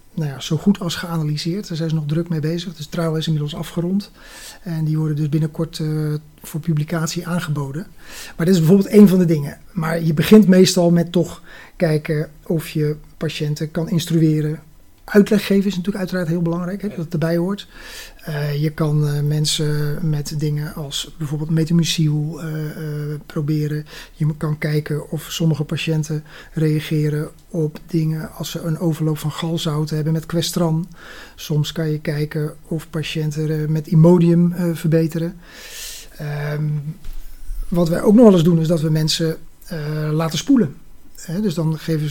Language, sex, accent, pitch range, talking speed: Dutch, male, Dutch, 155-180 Hz, 170 wpm